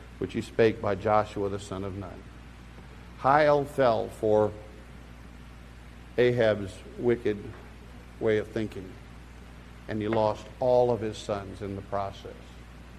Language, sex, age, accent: English, male, 50-69, American